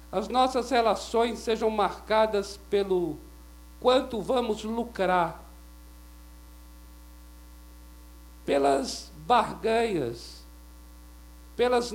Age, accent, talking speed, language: 50-69, Brazilian, 60 wpm, Portuguese